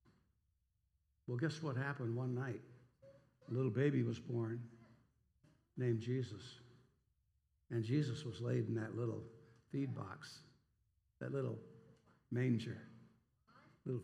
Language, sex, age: English, male, 60-79